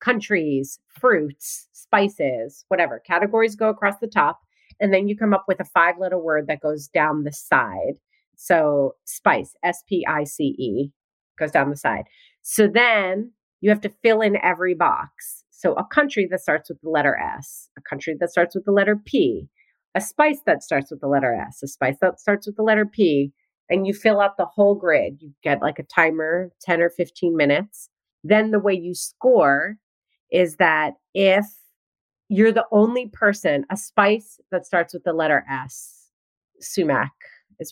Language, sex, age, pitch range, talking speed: English, female, 30-49, 155-215 Hz, 175 wpm